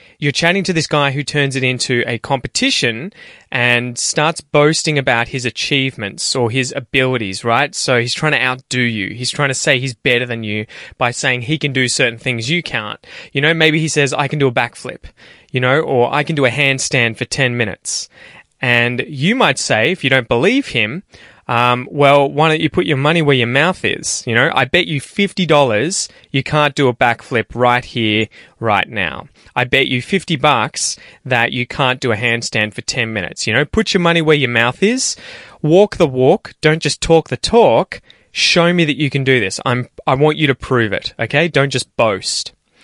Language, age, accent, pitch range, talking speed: English, 20-39, Australian, 120-150 Hz, 210 wpm